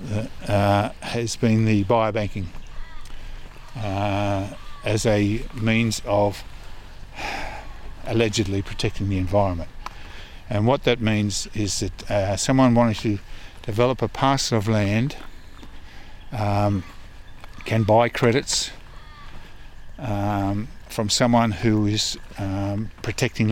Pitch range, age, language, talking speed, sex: 95-110 Hz, 50-69, English, 100 wpm, male